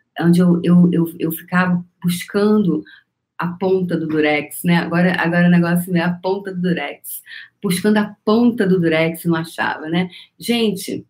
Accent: Brazilian